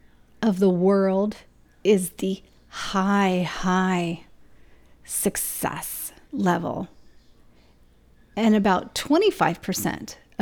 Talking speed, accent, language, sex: 70 wpm, American, English, female